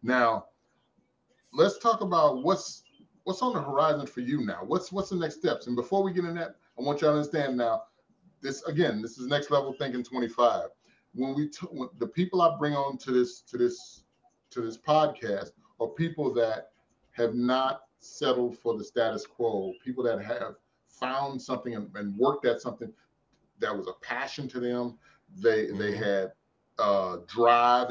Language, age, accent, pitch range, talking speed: English, 30-49, American, 120-160 Hz, 180 wpm